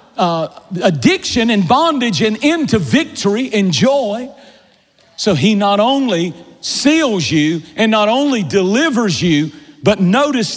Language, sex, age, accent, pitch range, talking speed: English, male, 50-69, American, 165-230 Hz, 125 wpm